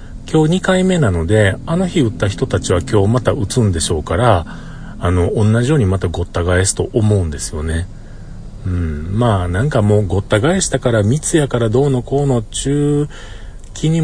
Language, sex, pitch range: Japanese, male, 95-125 Hz